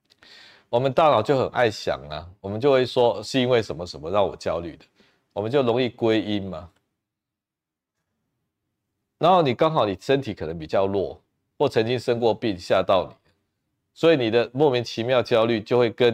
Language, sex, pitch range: Chinese, male, 95-120 Hz